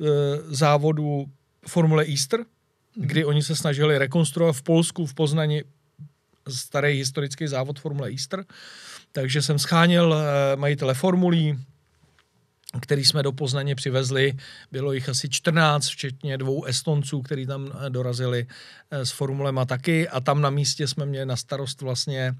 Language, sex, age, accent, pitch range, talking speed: Czech, male, 40-59, native, 135-160 Hz, 130 wpm